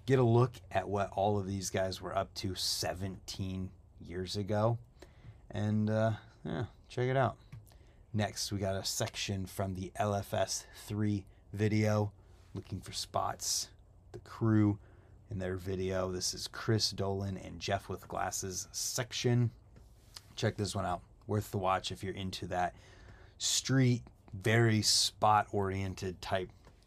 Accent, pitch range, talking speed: American, 95-110 Hz, 145 wpm